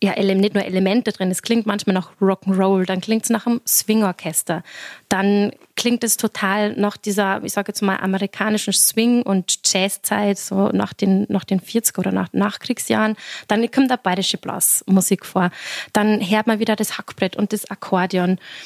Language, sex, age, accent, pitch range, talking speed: German, female, 20-39, German, 200-235 Hz, 175 wpm